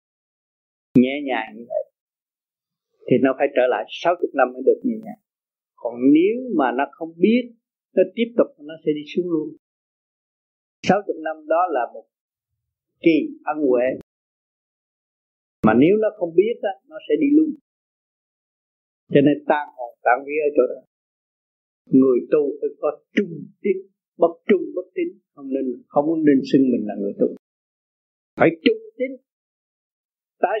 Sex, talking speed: male, 155 wpm